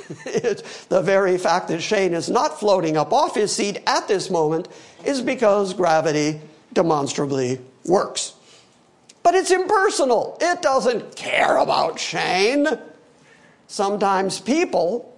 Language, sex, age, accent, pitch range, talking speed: English, male, 50-69, American, 165-255 Hz, 120 wpm